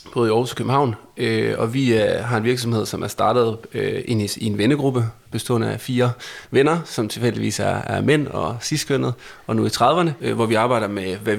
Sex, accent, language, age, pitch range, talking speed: male, native, Danish, 30-49, 110-125 Hz, 185 wpm